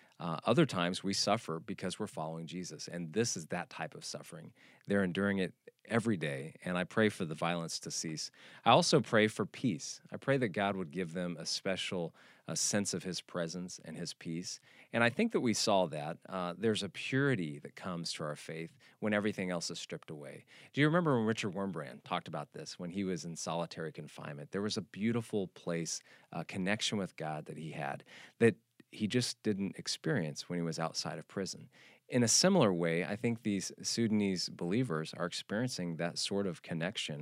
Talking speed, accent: 205 wpm, American